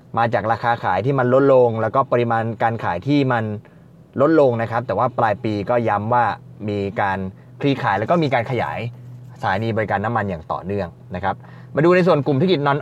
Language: Thai